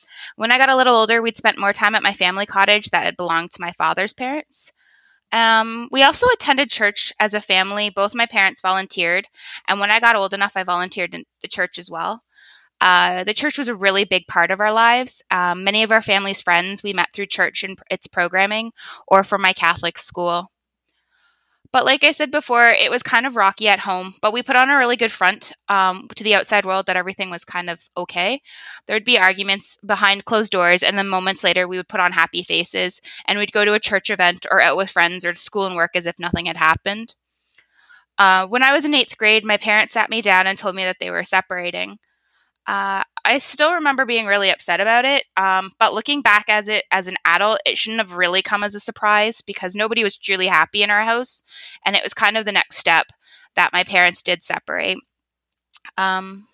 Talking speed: 225 wpm